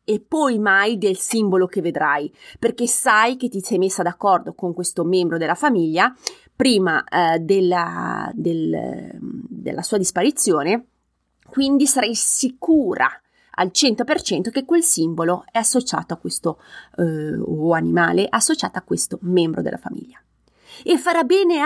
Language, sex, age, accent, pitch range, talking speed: Italian, female, 30-49, native, 175-250 Hz, 140 wpm